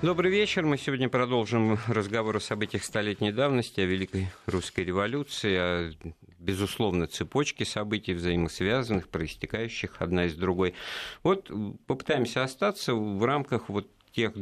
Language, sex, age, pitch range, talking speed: Russian, male, 50-69, 85-115 Hz, 125 wpm